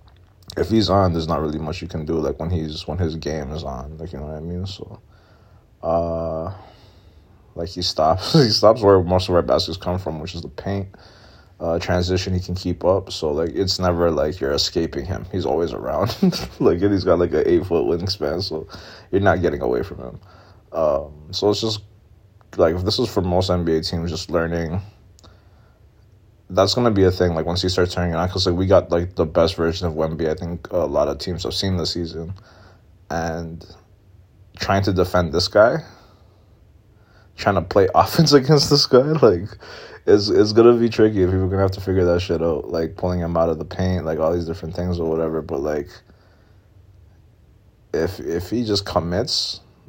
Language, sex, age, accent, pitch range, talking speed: English, male, 20-39, American, 85-100 Hz, 205 wpm